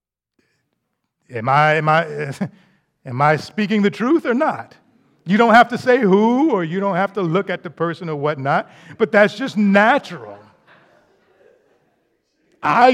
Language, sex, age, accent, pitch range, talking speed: English, male, 50-69, American, 150-215 Hz, 155 wpm